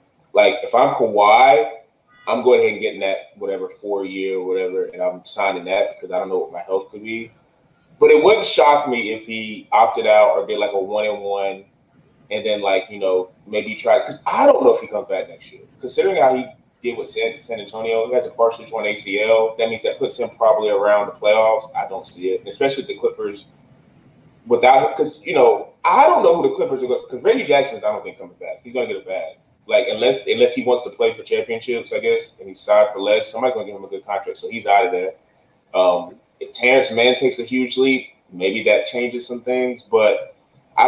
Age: 20-39